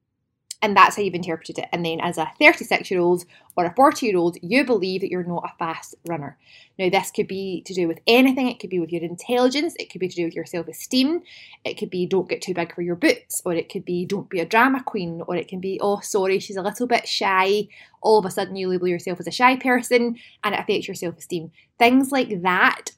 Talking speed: 245 wpm